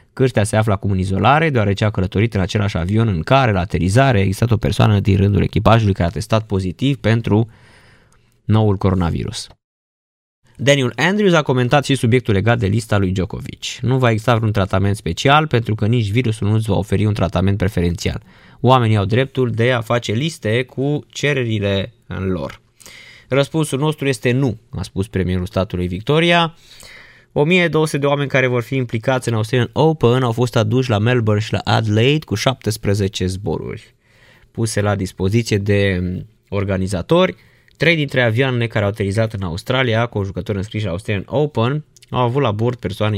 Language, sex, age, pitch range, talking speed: Romanian, male, 20-39, 100-130 Hz, 170 wpm